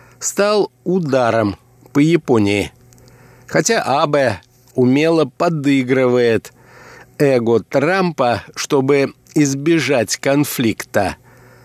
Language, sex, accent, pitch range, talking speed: Russian, male, native, 120-145 Hz, 65 wpm